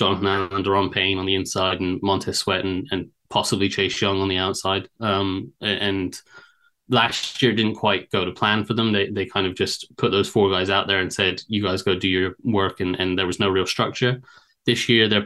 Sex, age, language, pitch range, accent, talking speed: male, 20-39, English, 95-105 Hz, British, 225 wpm